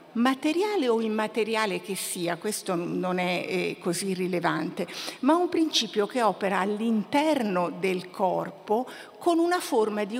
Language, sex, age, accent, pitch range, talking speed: Italian, female, 50-69, native, 185-240 Hz, 130 wpm